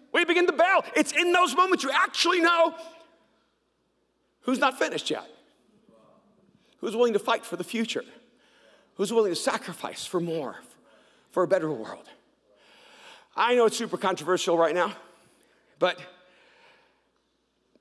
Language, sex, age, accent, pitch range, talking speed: English, male, 50-69, American, 205-280 Hz, 135 wpm